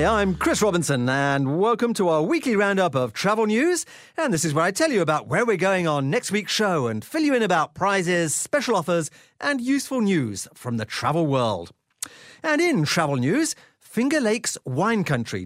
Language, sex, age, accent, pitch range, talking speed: English, male, 40-59, British, 140-230 Hz, 195 wpm